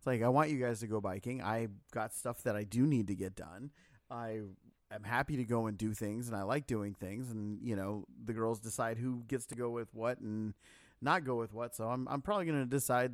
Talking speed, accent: 250 wpm, American